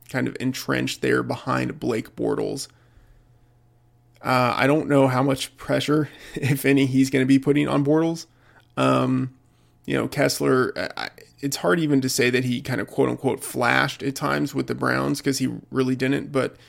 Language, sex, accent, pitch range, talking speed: English, male, American, 120-140 Hz, 175 wpm